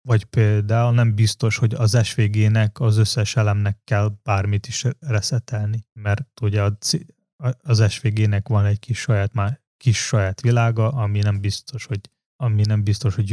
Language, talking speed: Hungarian, 155 wpm